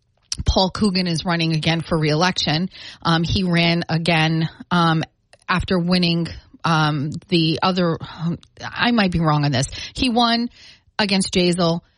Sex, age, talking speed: female, 30-49, 145 wpm